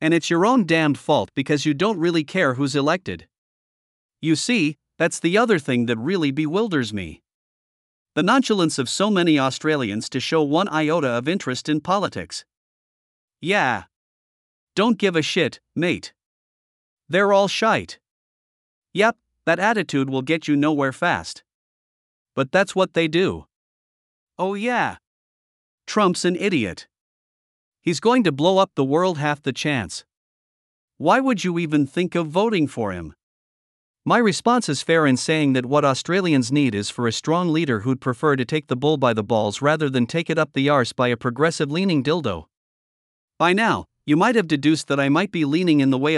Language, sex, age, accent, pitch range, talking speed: English, male, 50-69, American, 130-180 Hz, 170 wpm